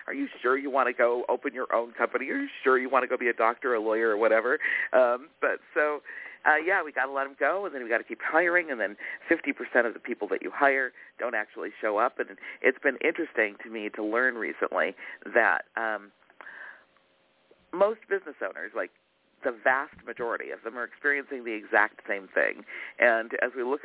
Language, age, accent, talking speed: English, 50-69, American, 215 wpm